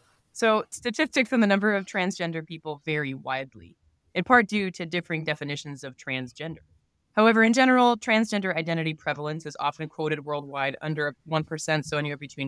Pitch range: 140-175 Hz